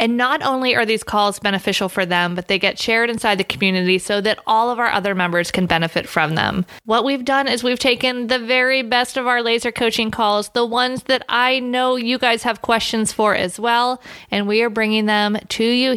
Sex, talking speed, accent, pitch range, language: female, 225 wpm, American, 185-245 Hz, English